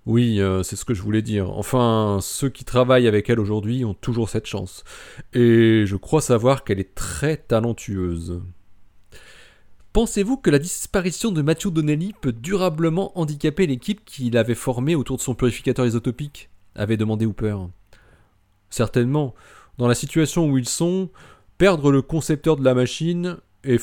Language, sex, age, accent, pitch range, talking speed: French, male, 30-49, French, 110-155 Hz, 155 wpm